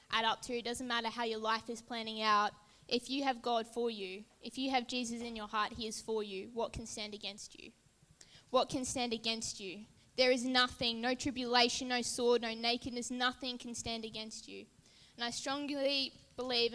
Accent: Australian